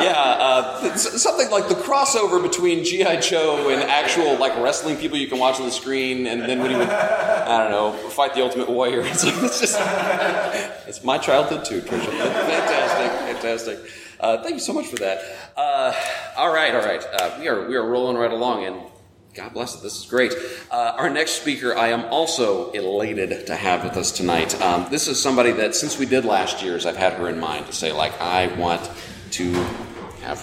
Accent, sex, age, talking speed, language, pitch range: American, male, 30-49, 205 wpm, English, 110-170 Hz